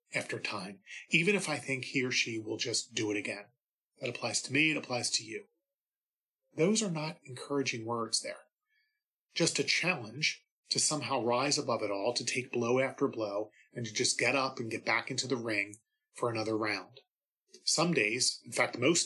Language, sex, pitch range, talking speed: English, male, 115-150 Hz, 190 wpm